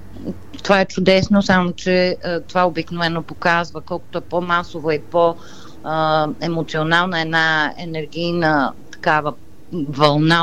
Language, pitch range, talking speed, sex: Bulgarian, 150-180 Hz, 120 wpm, female